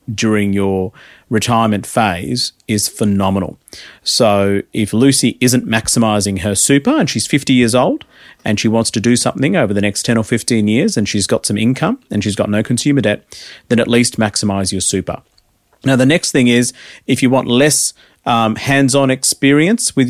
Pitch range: 105-125 Hz